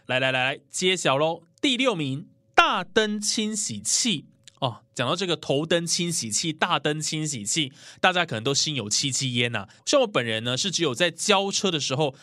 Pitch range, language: 130-200 Hz, Chinese